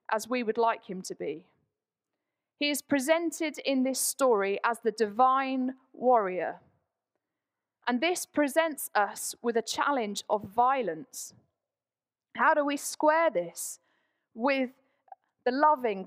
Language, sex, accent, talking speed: English, female, British, 125 wpm